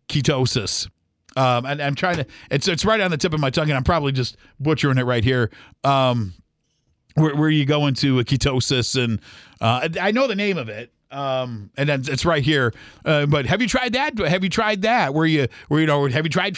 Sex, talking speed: male, 235 wpm